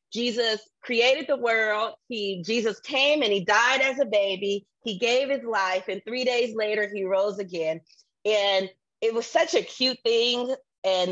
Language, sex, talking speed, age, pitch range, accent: English, female, 175 wpm, 30-49, 170-230 Hz, American